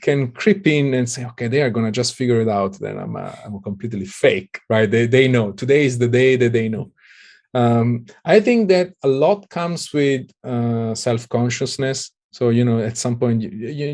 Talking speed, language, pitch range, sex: 205 wpm, English, 115-140 Hz, male